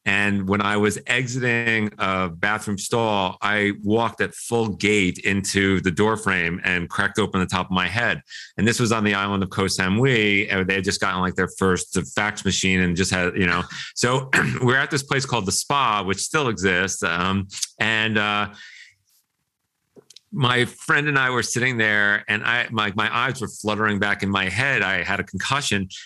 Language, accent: English, American